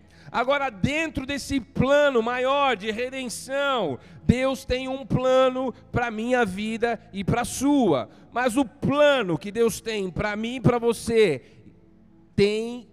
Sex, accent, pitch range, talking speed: male, Brazilian, 185-255 Hz, 145 wpm